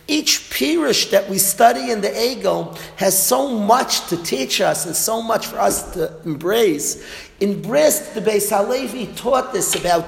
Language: English